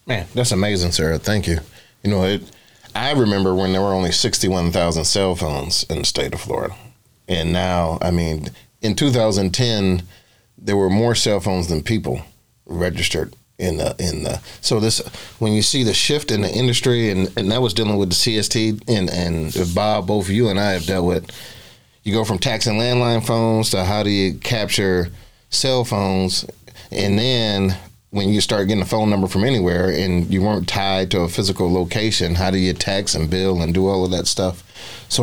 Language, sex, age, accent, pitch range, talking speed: English, male, 30-49, American, 90-110 Hz, 200 wpm